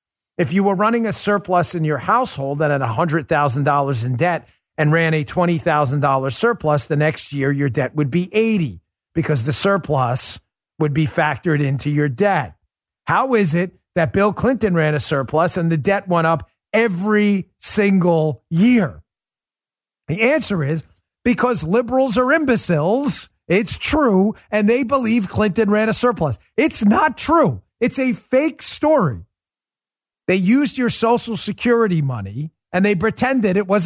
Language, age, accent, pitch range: English, 40-59, American, 150-225 Hz